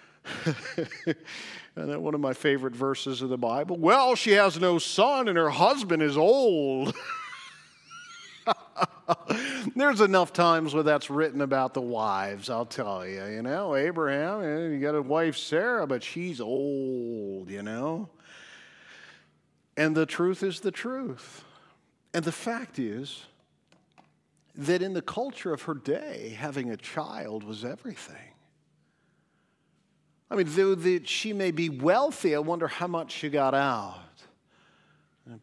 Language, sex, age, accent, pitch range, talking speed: English, male, 50-69, American, 115-175 Hz, 135 wpm